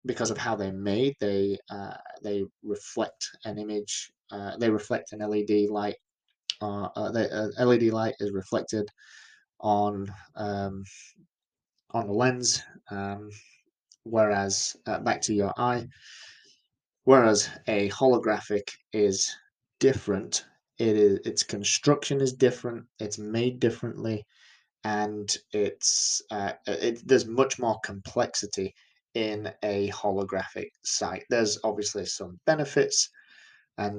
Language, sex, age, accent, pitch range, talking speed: English, male, 20-39, British, 100-125 Hz, 120 wpm